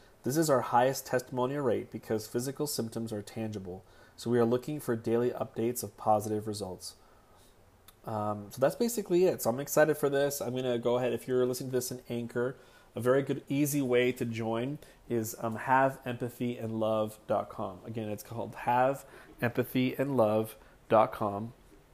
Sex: male